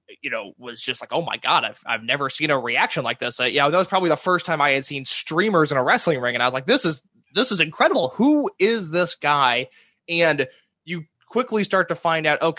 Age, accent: 20-39, American